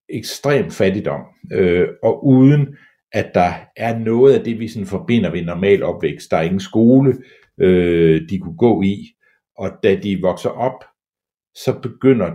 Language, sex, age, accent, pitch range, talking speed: Danish, male, 60-79, native, 85-135 Hz, 160 wpm